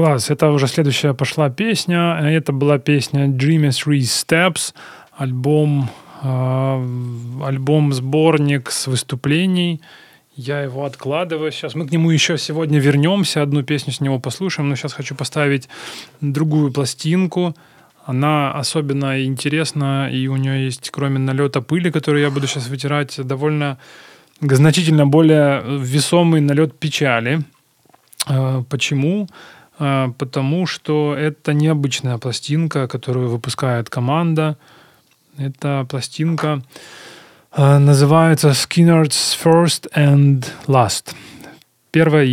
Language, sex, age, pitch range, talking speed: Ukrainian, male, 20-39, 135-155 Hz, 105 wpm